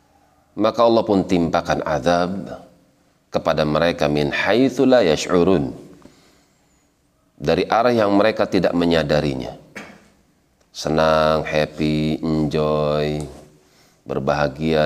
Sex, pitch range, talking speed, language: male, 75-85 Hz, 80 wpm, Indonesian